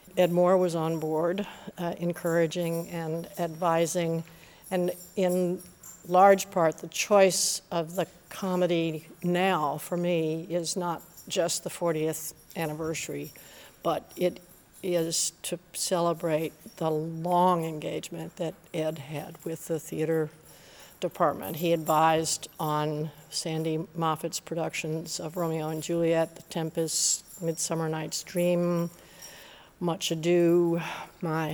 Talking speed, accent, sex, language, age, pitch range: 115 wpm, American, female, English, 60-79, 160-180 Hz